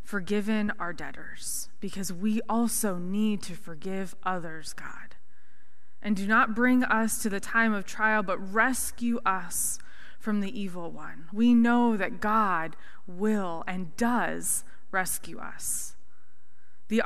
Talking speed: 135 wpm